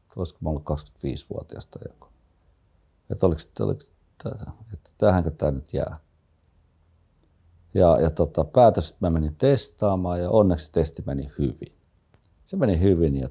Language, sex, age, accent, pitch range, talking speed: Finnish, male, 50-69, native, 75-90 Hz, 120 wpm